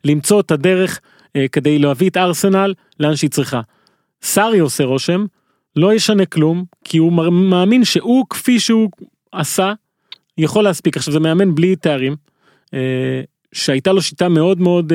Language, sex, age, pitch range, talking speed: Hebrew, male, 30-49, 145-195 Hz, 155 wpm